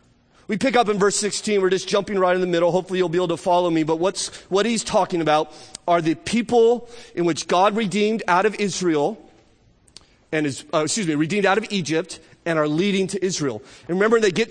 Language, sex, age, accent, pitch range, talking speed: English, male, 30-49, American, 145-195 Hz, 225 wpm